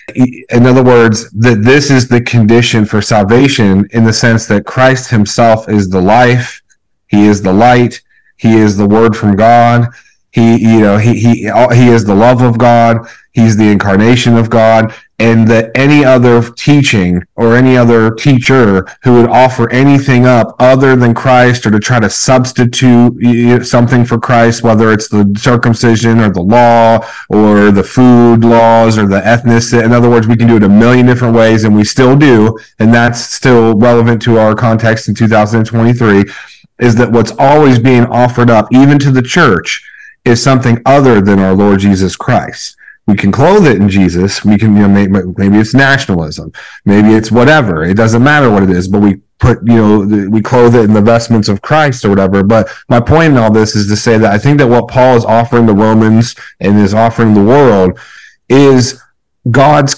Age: 40-59